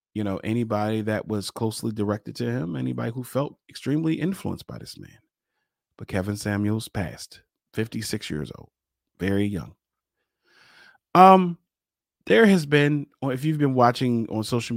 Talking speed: 145 wpm